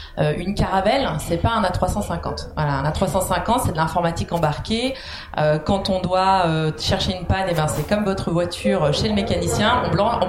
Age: 30-49